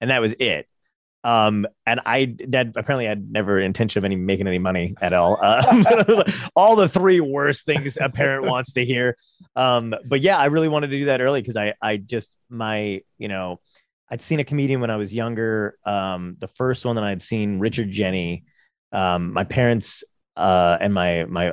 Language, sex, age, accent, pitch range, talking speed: English, male, 30-49, American, 100-135 Hz, 200 wpm